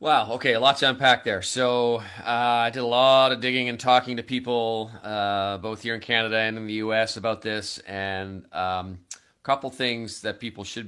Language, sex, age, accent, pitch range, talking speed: English, male, 30-49, American, 95-115 Hz, 210 wpm